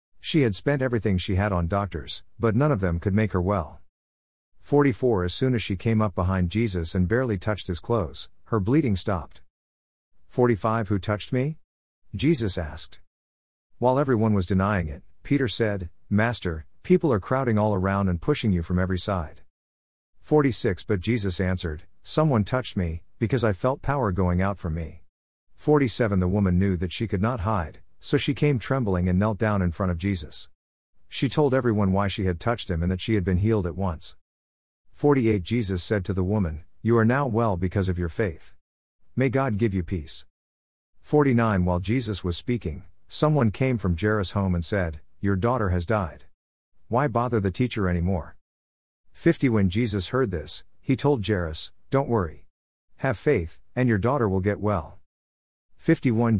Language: English